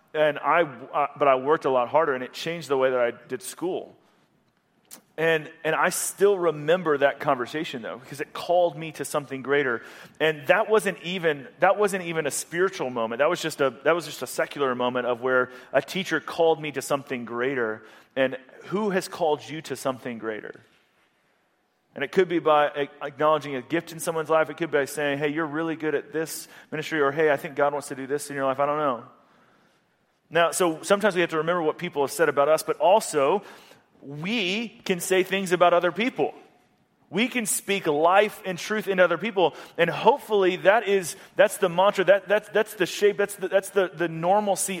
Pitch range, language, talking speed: 145-190 Hz, English, 210 wpm